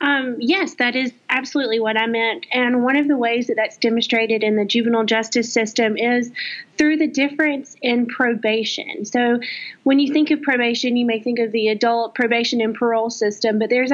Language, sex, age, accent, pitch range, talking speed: English, female, 30-49, American, 225-260 Hz, 195 wpm